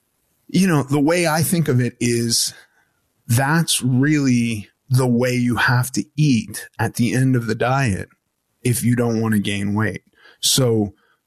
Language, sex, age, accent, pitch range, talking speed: English, male, 30-49, American, 115-150 Hz, 165 wpm